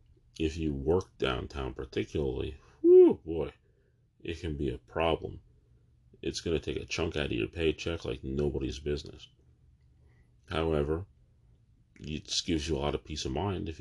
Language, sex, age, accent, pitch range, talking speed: English, male, 40-59, American, 70-100 Hz, 155 wpm